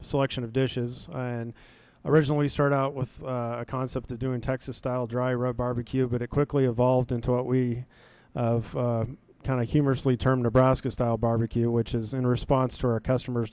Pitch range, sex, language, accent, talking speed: 120-135 Hz, male, English, American, 175 wpm